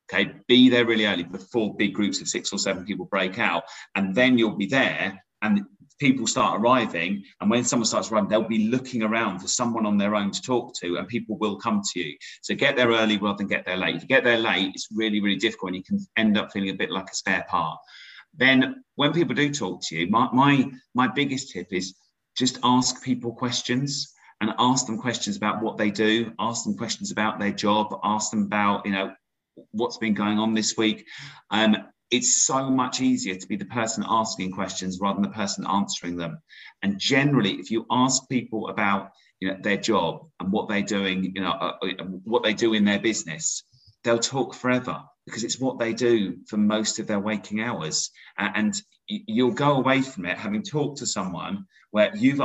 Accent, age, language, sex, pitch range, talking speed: British, 30-49, English, male, 105-130 Hz, 215 wpm